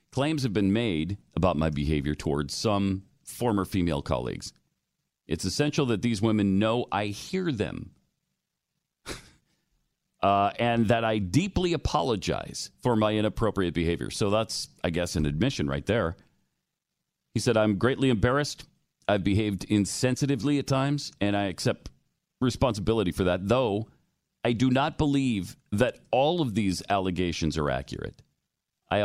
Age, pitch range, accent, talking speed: 40-59, 100-155 Hz, American, 140 wpm